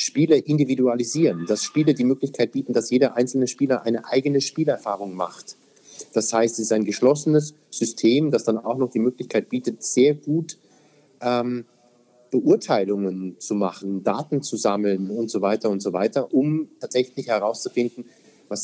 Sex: male